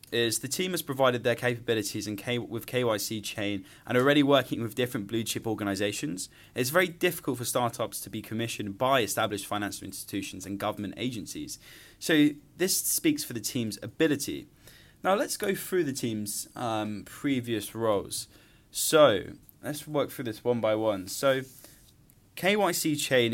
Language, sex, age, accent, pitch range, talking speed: English, male, 20-39, British, 110-145 Hz, 160 wpm